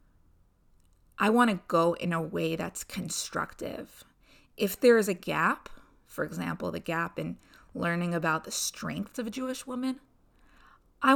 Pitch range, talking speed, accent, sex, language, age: 170-230 Hz, 145 wpm, American, female, English, 20-39